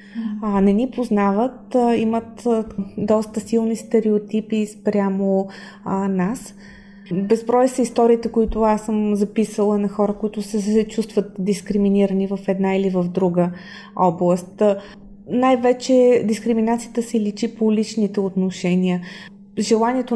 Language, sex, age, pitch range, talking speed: Bulgarian, female, 20-39, 200-225 Hz, 105 wpm